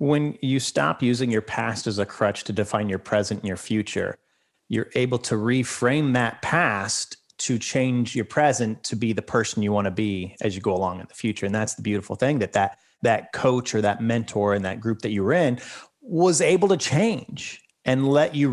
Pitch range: 110-145 Hz